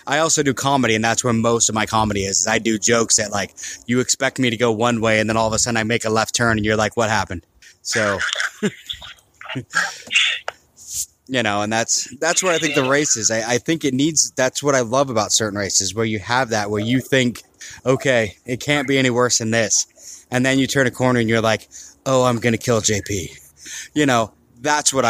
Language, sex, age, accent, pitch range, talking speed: English, male, 20-39, American, 110-130 Hz, 235 wpm